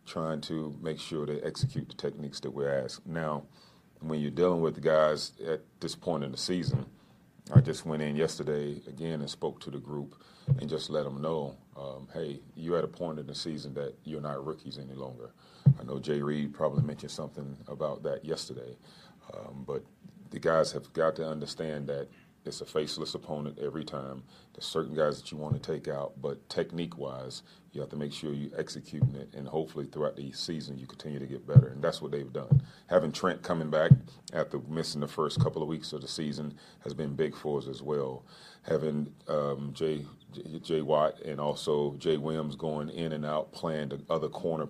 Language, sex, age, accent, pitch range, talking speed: English, male, 40-59, American, 70-80 Hz, 205 wpm